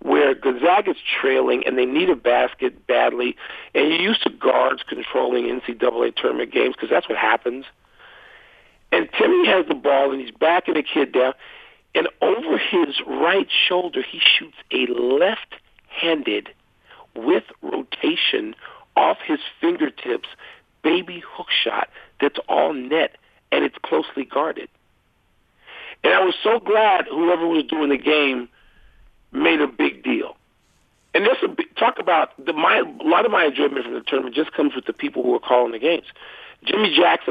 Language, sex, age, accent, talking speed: English, male, 50-69, American, 160 wpm